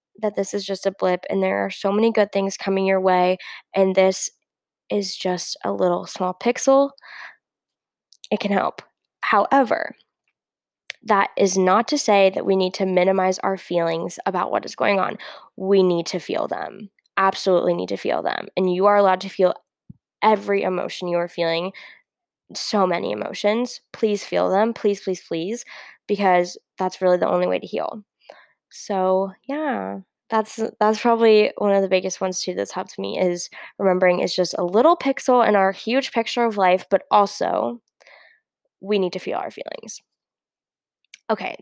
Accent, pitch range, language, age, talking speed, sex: American, 185-220 Hz, English, 10-29, 170 wpm, female